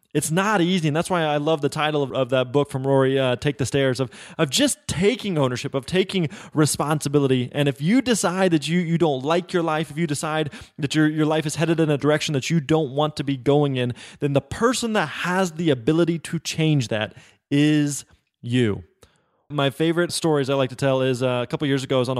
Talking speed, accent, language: 235 wpm, American, English